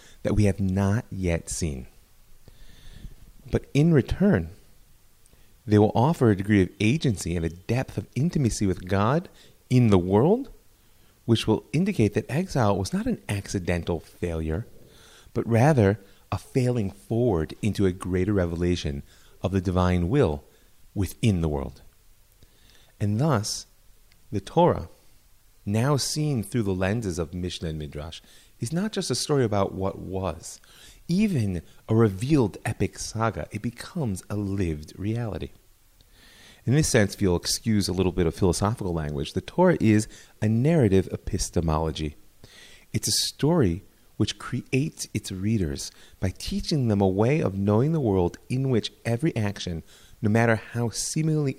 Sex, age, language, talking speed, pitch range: male, 30-49, English, 145 wpm, 95-120 Hz